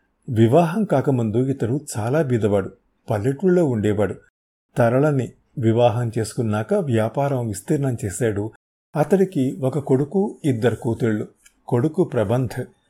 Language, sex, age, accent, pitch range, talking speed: Telugu, male, 50-69, native, 110-145 Hz, 95 wpm